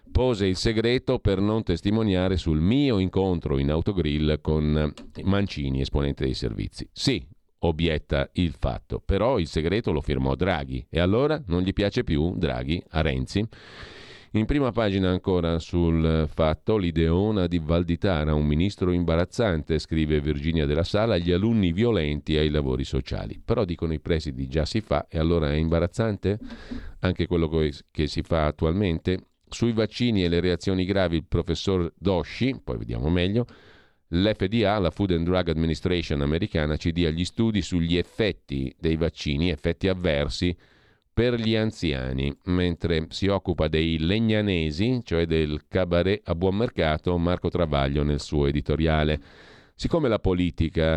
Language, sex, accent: Italian, male, native